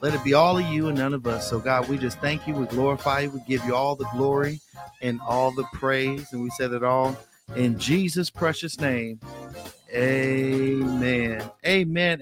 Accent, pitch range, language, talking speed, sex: American, 115-140 Hz, English, 195 wpm, male